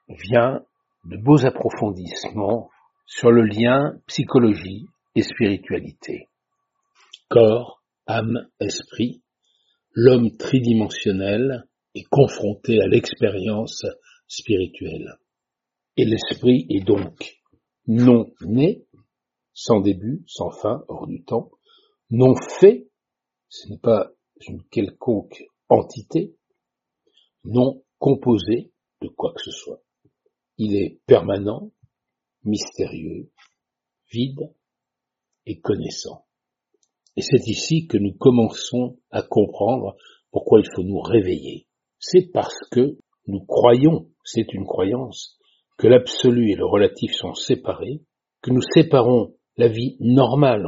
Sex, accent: male, French